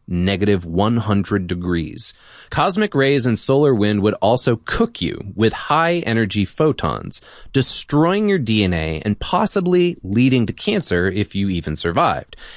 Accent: American